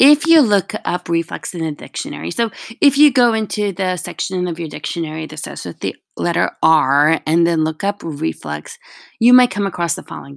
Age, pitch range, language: 20-39, 160-215 Hz, English